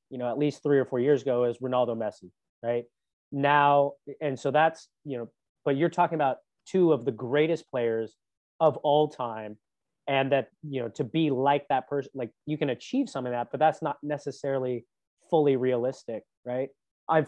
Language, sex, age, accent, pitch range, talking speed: English, male, 30-49, American, 120-145 Hz, 190 wpm